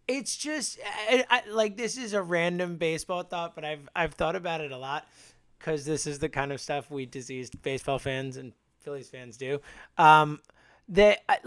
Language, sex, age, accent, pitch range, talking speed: English, male, 30-49, American, 160-240 Hz, 190 wpm